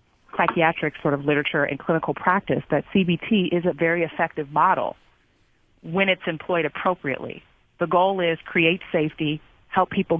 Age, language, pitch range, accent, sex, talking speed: 30-49, English, 150-175 Hz, American, female, 145 wpm